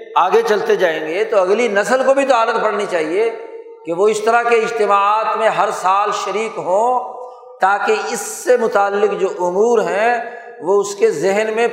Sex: male